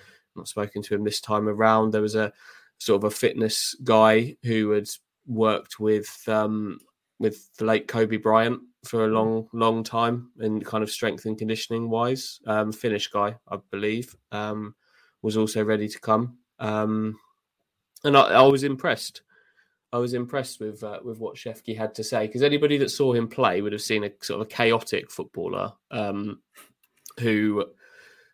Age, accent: 20-39, British